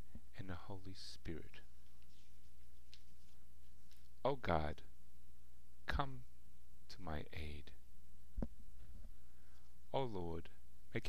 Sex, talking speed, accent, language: male, 70 wpm, American, English